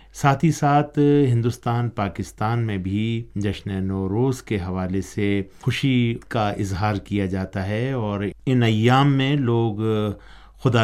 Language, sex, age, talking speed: Urdu, male, 50-69, 125 wpm